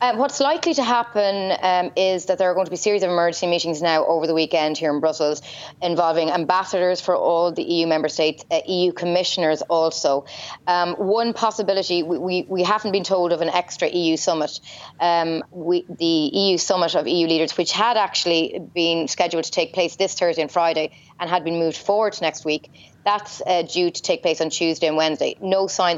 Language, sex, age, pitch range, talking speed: English, female, 30-49, 160-185 Hz, 210 wpm